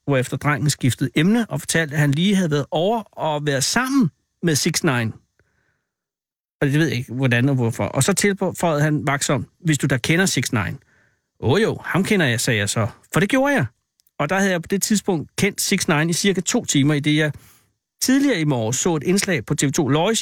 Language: Danish